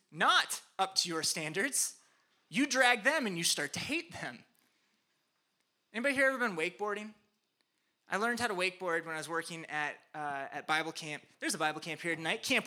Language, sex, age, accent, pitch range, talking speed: English, male, 20-39, American, 175-245 Hz, 190 wpm